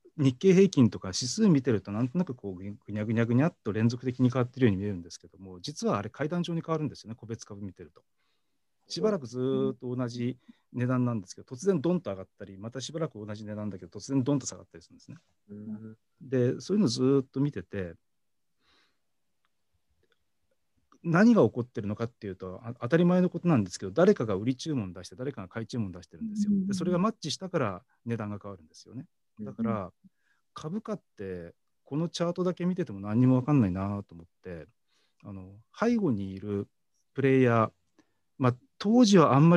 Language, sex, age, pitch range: Japanese, male, 40-59, 100-150 Hz